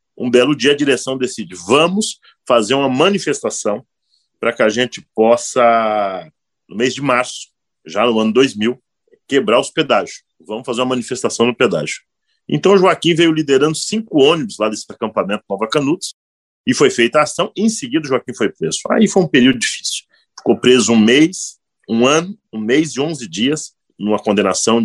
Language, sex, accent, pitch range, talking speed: Portuguese, male, Brazilian, 115-160 Hz, 175 wpm